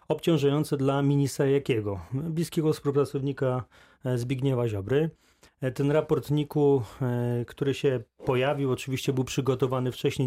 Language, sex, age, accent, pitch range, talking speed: Polish, male, 30-49, native, 130-155 Hz, 105 wpm